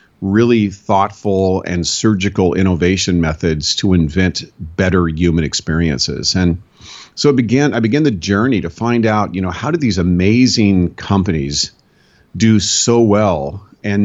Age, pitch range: 40-59, 85-105 Hz